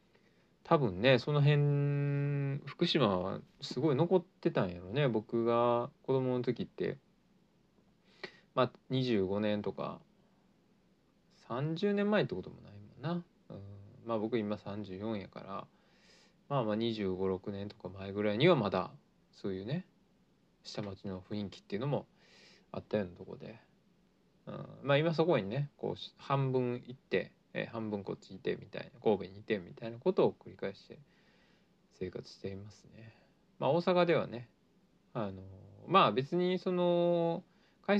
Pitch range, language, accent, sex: 110-180 Hz, Japanese, native, male